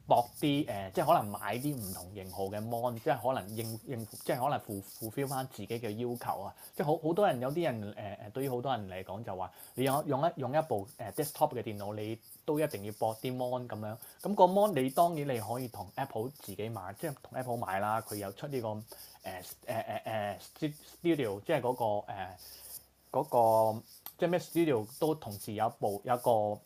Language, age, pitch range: Chinese, 20-39, 105-140 Hz